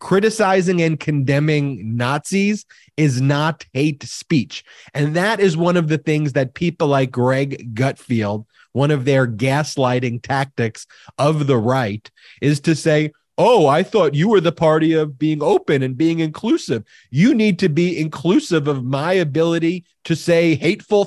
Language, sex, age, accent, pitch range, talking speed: English, male, 30-49, American, 135-165 Hz, 155 wpm